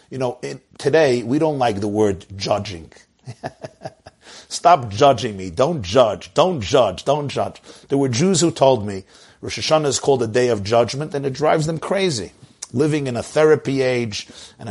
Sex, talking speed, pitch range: male, 175 wpm, 110-165 Hz